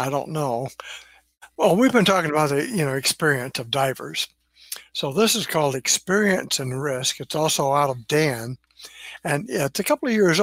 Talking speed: 185 wpm